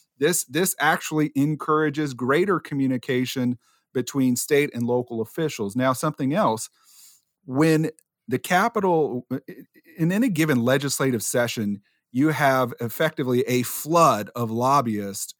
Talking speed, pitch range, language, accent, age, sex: 115 wpm, 120-150 Hz, English, American, 40-59, male